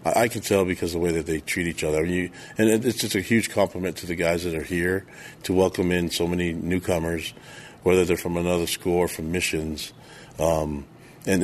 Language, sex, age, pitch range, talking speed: English, male, 40-59, 80-90 Hz, 220 wpm